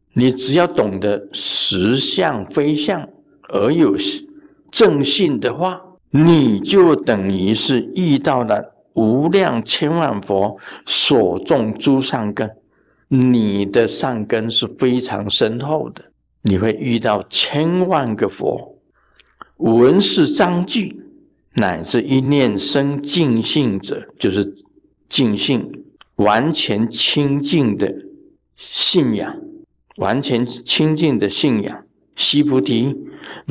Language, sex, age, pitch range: Chinese, male, 50-69, 100-155 Hz